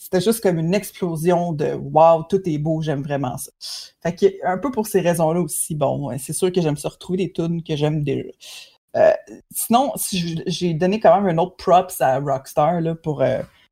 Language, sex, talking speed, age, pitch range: French, female, 230 wpm, 30-49, 160-205 Hz